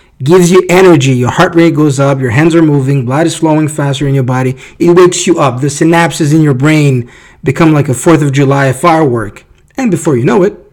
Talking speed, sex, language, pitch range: 225 wpm, male, English, 130-170 Hz